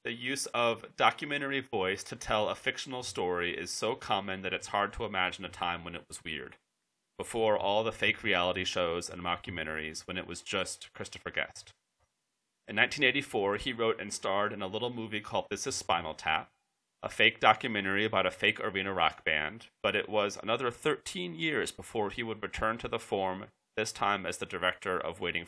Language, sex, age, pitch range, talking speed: English, male, 30-49, 95-120 Hz, 195 wpm